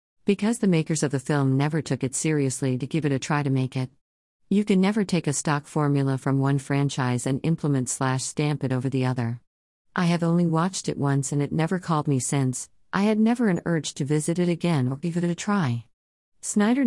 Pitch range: 130-160 Hz